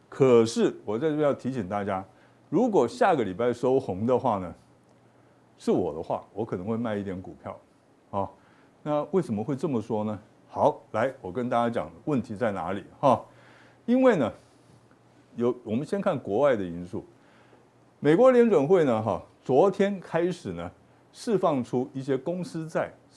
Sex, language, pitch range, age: male, Chinese, 120-180 Hz, 60-79